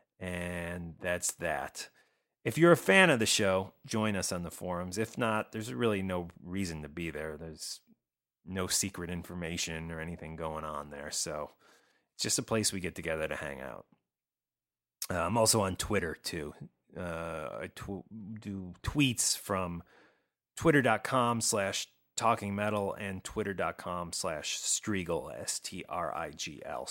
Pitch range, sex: 90-120 Hz, male